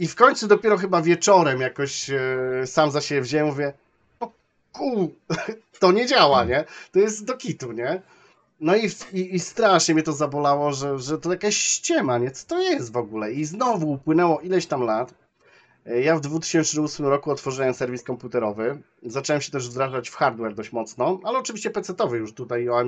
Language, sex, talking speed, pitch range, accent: Polish, male, 180 wpm, 125-185 Hz, native